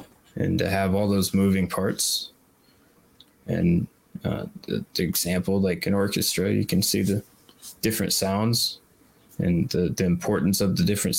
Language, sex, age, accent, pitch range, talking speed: English, male, 20-39, American, 95-100 Hz, 150 wpm